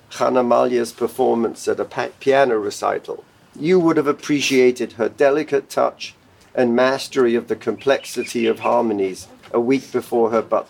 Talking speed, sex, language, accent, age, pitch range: 145 wpm, male, English, British, 50-69, 125-160 Hz